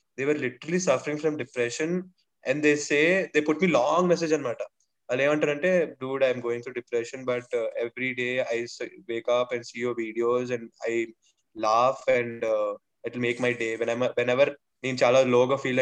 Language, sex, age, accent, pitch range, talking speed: Telugu, male, 20-39, native, 125-170 Hz, 195 wpm